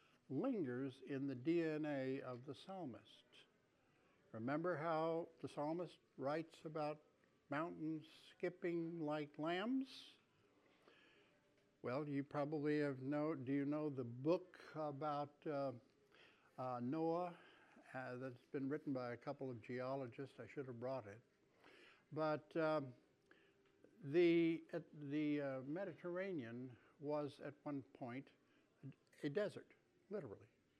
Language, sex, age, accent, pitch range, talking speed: English, male, 60-79, American, 135-170 Hz, 115 wpm